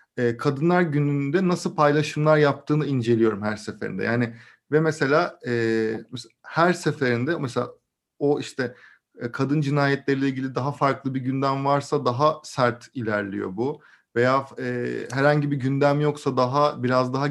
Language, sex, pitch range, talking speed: Turkish, male, 120-150 Hz, 130 wpm